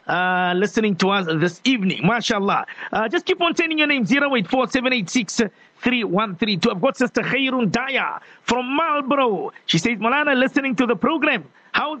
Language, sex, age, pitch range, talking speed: English, male, 50-69, 210-265 Hz, 150 wpm